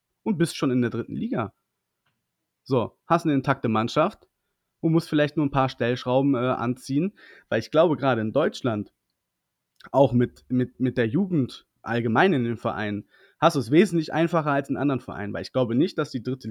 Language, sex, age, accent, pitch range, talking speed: German, male, 30-49, German, 120-165 Hz, 195 wpm